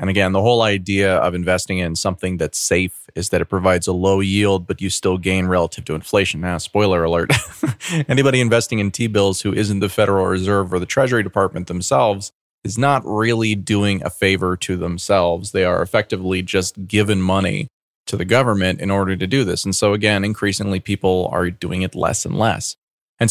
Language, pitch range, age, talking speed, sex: English, 95-115 Hz, 30-49, 195 wpm, male